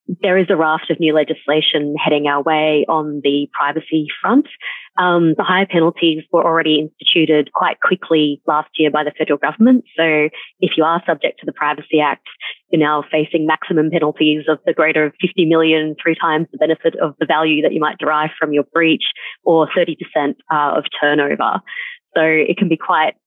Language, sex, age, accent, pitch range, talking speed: English, female, 30-49, Australian, 155-175 Hz, 185 wpm